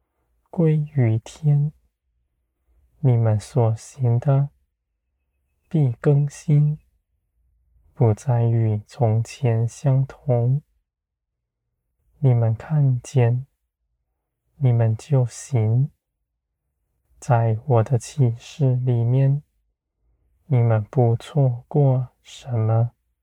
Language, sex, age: Chinese, male, 20-39